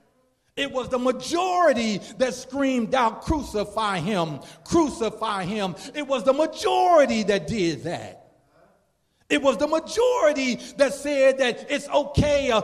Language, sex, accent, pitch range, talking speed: English, male, American, 185-260 Hz, 130 wpm